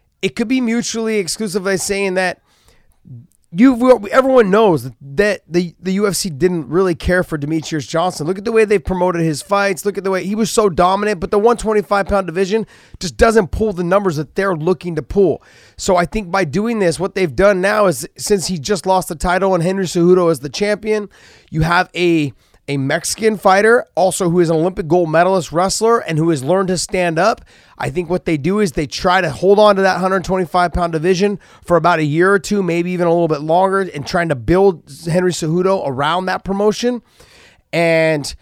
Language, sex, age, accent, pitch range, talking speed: English, male, 30-49, American, 165-200 Hz, 205 wpm